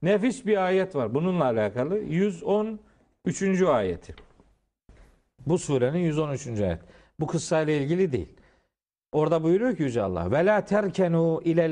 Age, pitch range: 50-69, 120-185 Hz